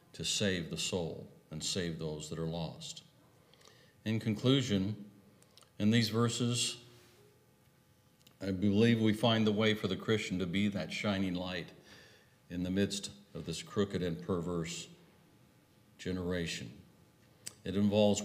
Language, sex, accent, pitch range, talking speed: English, male, American, 90-120 Hz, 130 wpm